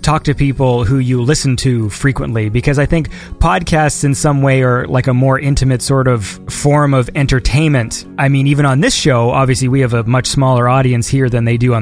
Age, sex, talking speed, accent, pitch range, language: 20-39, male, 220 wpm, American, 125-150 Hz, English